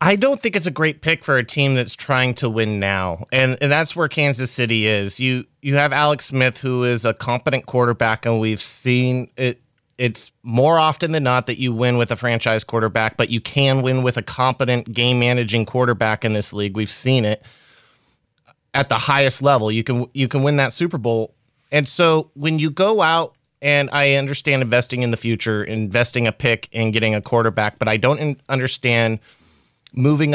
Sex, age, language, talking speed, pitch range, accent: male, 30-49, English, 200 wpm, 115-140 Hz, American